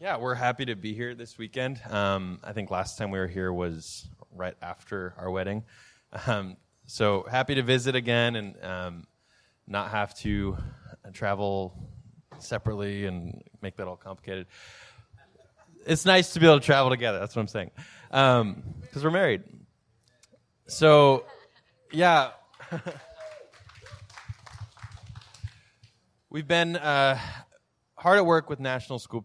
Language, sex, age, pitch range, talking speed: English, male, 20-39, 100-125 Hz, 135 wpm